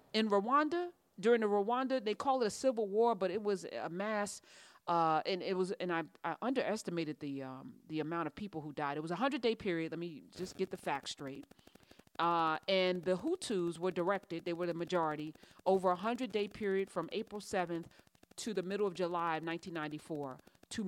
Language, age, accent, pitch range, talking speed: English, 40-59, American, 165-200 Hz, 200 wpm